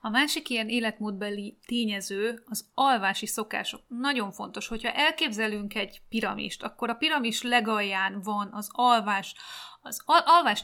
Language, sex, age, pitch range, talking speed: Hungarian, female, 30-49, 200-240 Hz, 130 wpm